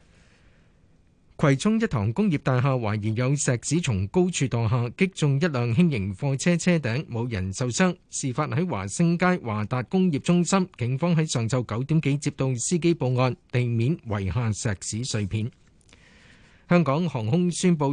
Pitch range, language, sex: 120-165 Hz, Chinese, male